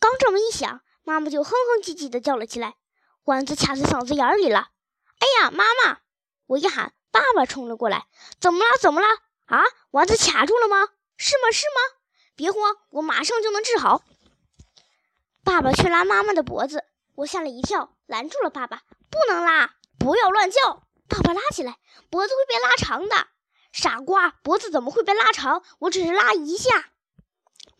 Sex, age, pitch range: male, 20-39, 300-430 Hz